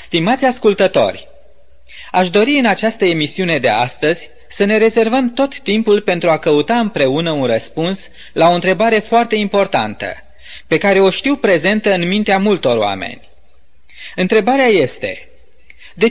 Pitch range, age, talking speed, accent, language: 150-220 Hz, 20-39, 140 wpm, native, Romanian